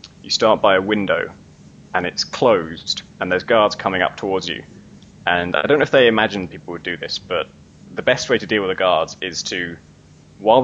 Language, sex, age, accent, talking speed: English, male, 20-39, British, 215 wpm